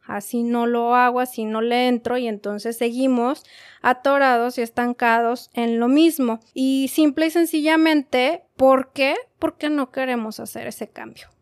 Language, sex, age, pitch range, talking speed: Spanish, female, 20-39, 230-275 Hz, 150 wpm